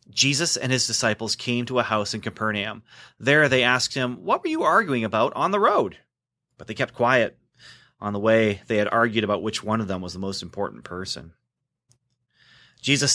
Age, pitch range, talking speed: 30-49, 110-135 Hz, 195 wpm